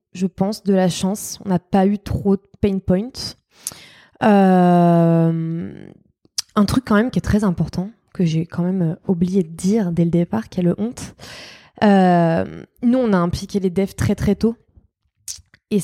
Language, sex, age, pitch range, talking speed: French, female, 20-39, 180-205 Hz, 180 wpm